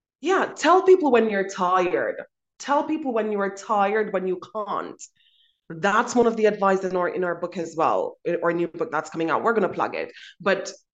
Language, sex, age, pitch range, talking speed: English, female, 20-39, 180-245 Hz, 210 wpm